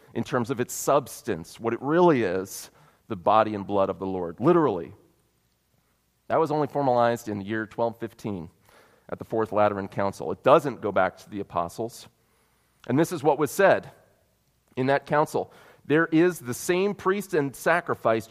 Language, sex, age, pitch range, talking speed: English, male, 30-49, 110-155 Hz, 175 wpm